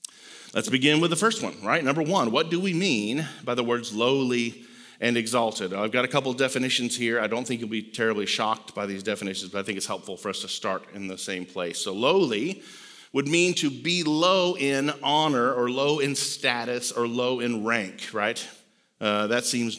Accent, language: American, English